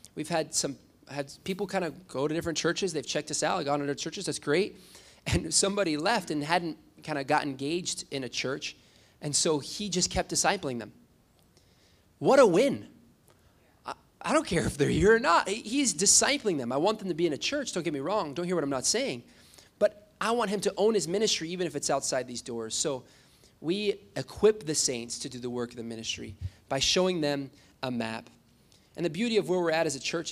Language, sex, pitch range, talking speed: English, male, 145-195 Hz, 230 wpm